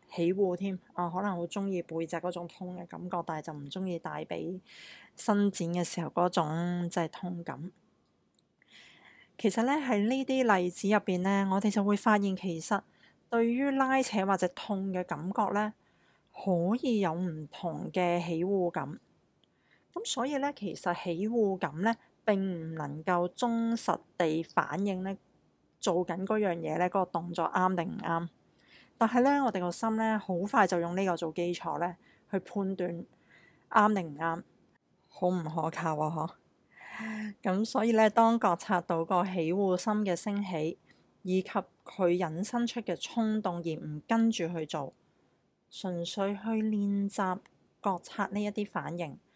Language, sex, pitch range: Chinese, female, 170-210 Hz